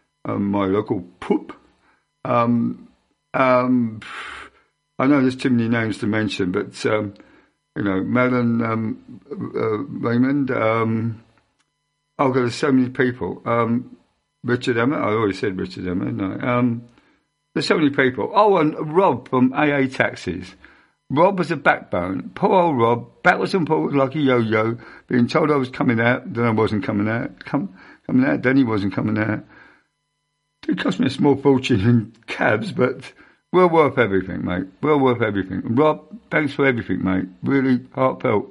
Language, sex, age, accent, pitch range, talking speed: English, male, 50-69, British, 110-145 Hz, 160 wpm